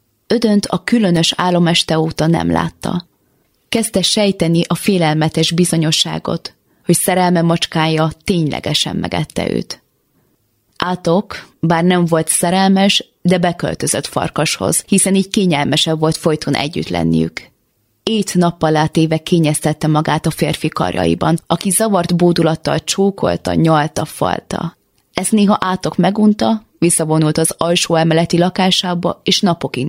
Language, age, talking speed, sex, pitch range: Hungarian, 20-39, 115 wpm, female, 155-185 Hz